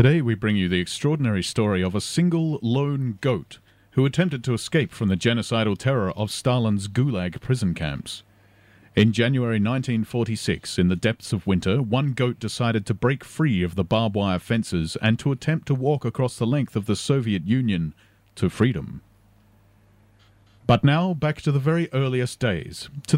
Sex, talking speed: male, 175 wpm